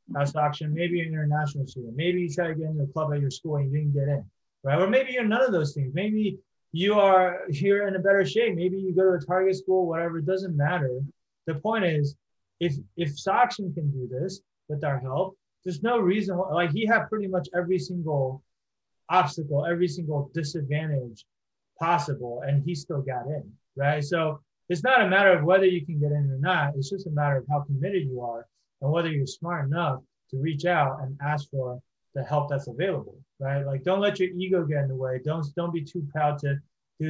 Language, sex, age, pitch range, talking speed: English, male, 30-49, 140-180 Hz, 220 wpm